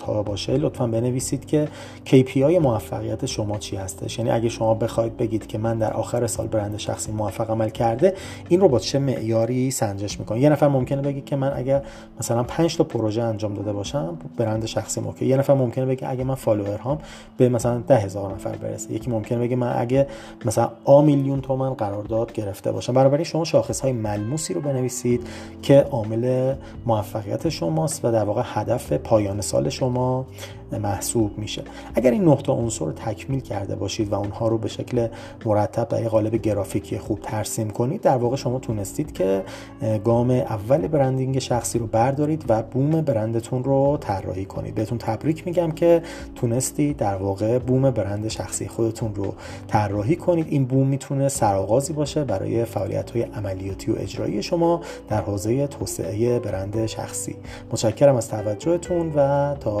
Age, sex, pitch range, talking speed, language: 30-49, male, 110-135 Hz, 165 wpm, Persian